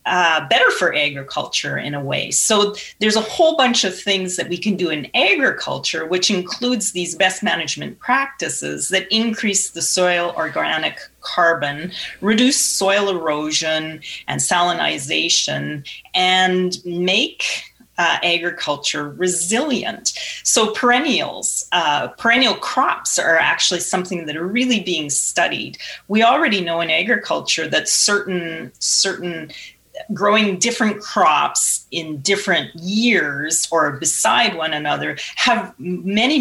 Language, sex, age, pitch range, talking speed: English, female, 30-49, 160-215 Hz, 125 wpm